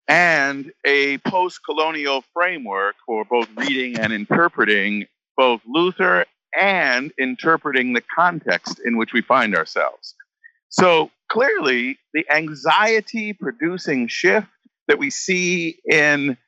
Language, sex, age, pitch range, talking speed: English, male, 50-69, 125-205 Hz, 105 wpm